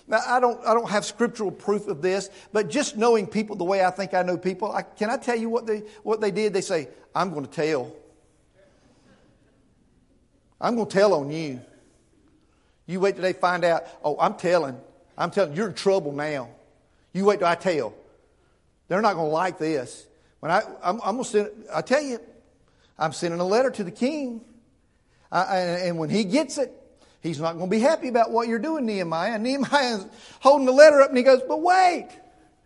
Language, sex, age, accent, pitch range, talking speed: English, male, 50-69, American, 160-255 Hz, 215 wpm